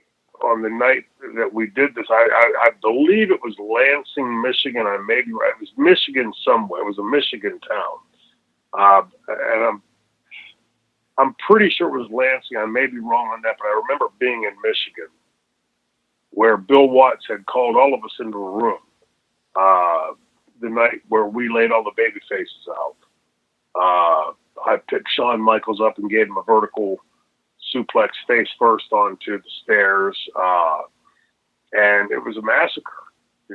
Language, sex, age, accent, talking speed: English, male, 40-59, American, 170 wpm